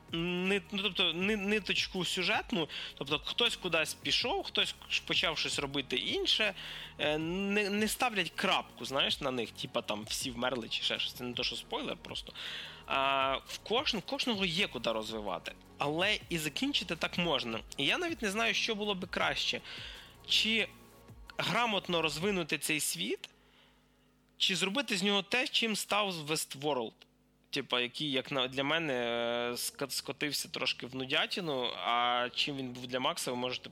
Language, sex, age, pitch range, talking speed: Russian, male, 20-39, 125-195 Hz, 150 wpm